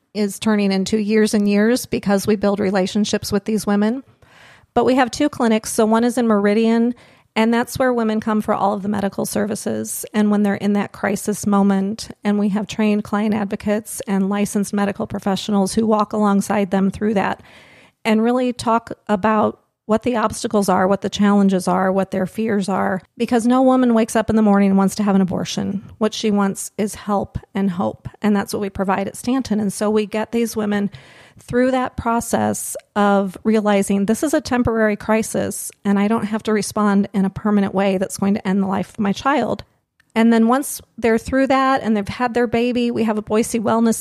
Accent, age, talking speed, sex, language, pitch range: American, 40-59, 205 wpm, female, English, 200-225 Hz